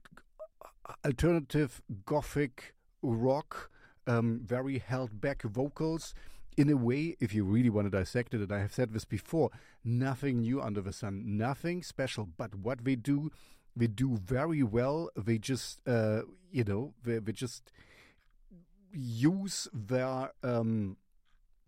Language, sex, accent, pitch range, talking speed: English, male, German, 105-135 Hz, 135 wpm